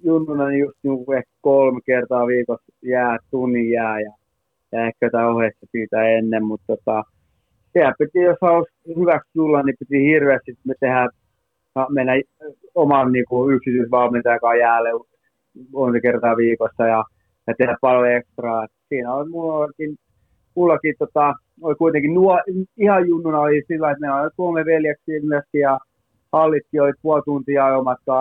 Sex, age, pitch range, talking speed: male, 30-49, 120-145 Hz, 145 wpm